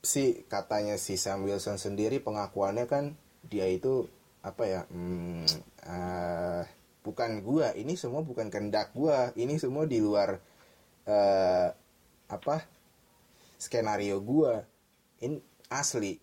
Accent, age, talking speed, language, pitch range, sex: native, 20-39, 115 wpm, Indonesian, 90-120 Hz, male